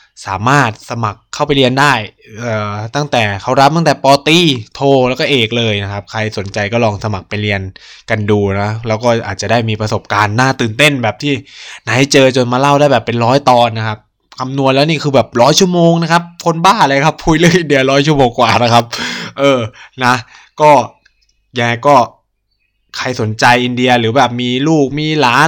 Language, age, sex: Thai, 20-39, male